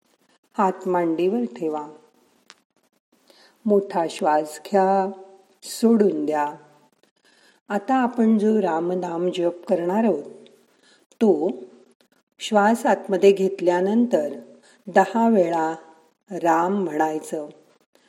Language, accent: Marathi, native